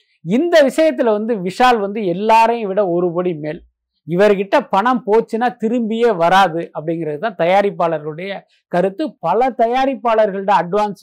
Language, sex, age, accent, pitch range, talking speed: Tamil, male, 50-69, native, 175-230 Hz, 115 wpm